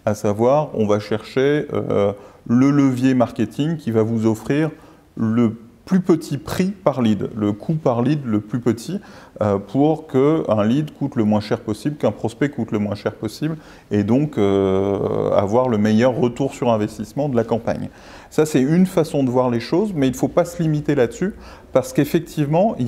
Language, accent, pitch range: French, French, 110-150 Hz